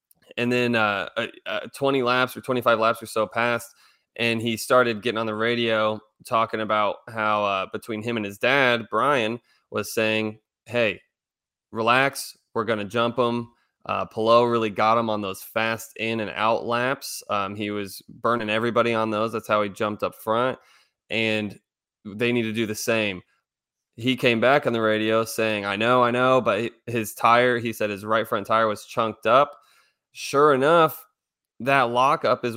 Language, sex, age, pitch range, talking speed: English, male, 20-39, 105-120 Hz, 180 wpm